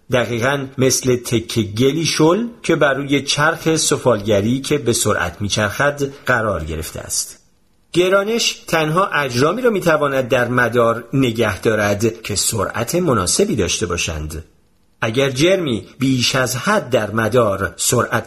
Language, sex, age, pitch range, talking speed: Persian, male, 40-59, 115-160 Hz, 125 wpm